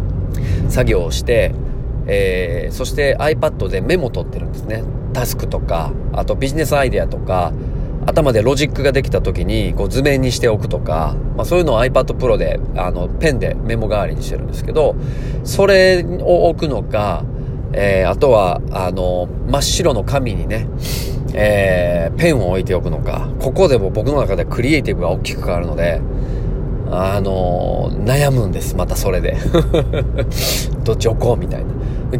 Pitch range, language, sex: 100-135 Hz, Japanese, male